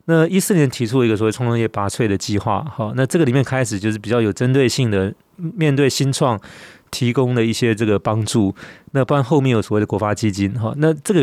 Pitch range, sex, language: 105-130 Hz, male, Chinese